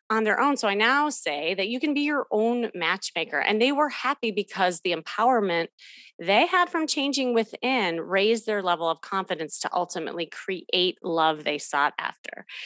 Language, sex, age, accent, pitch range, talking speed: English, female, 30-49, American, 175-235 Hz, 180 wpm